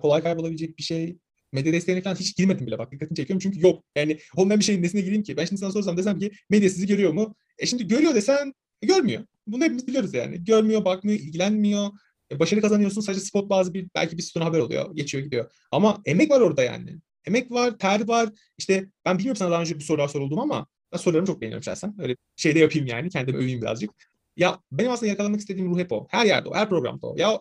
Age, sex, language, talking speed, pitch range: 30-49, male, Turkish, 230 wpm, 150-205 Hz